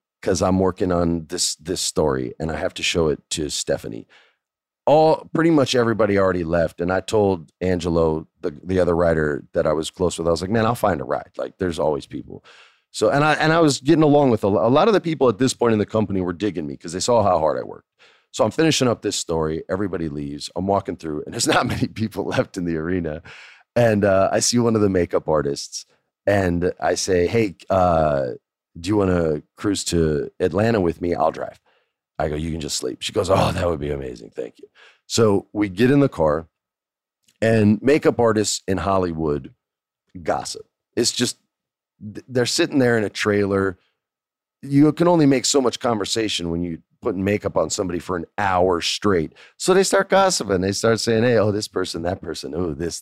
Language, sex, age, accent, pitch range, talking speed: English, male, 40-59, American, 85-115 Hz, 215 wpm